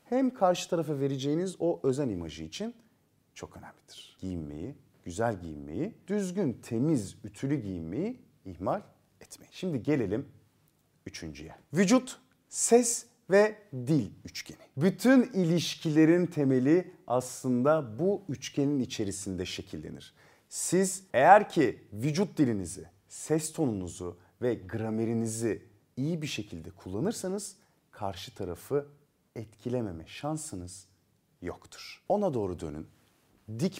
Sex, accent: male, native